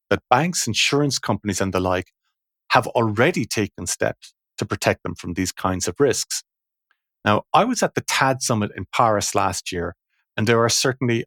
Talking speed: 180 wpm